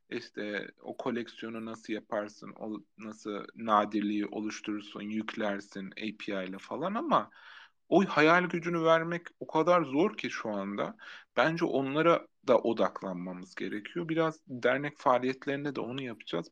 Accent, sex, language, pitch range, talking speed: native, male, Turkish, 115-145 Hz, 125 wpm